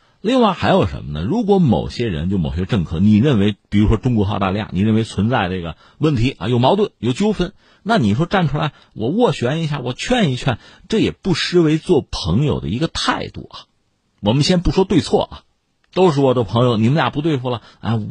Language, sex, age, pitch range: Chinese, male, 50-69, 105-175 Hz